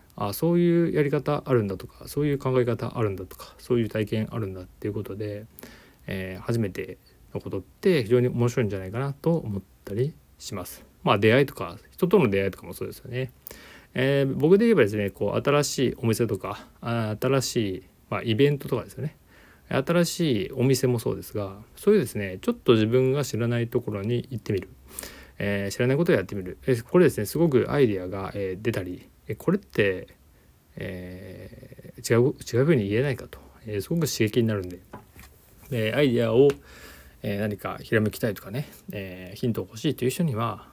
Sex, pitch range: male, 100-135 Hz